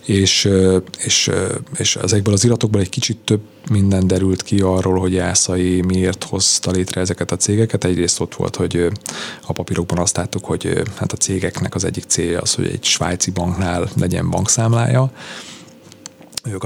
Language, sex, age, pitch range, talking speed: Hungarian, male, 30-49, 90-110 Hz, 160 wpm